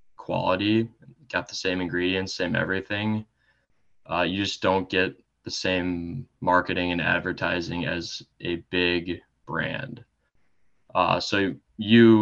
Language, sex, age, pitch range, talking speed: English, male, 20-39, 90-95 Hz, 120 wpm